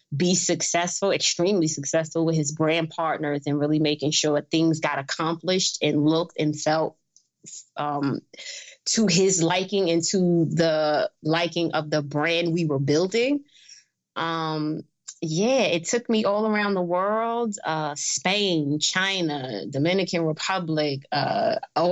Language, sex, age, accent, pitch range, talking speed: English, female, 20-39, American, 155-185 Hz, 130 wpm